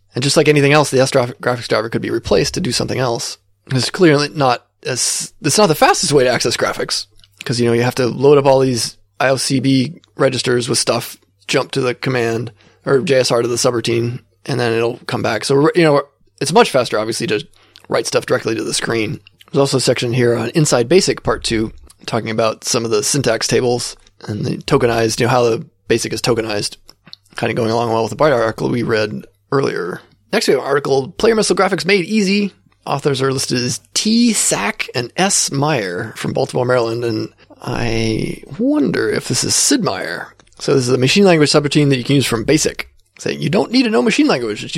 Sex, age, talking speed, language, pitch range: male, 20-39, 215 wpm, English, 115-145 Hz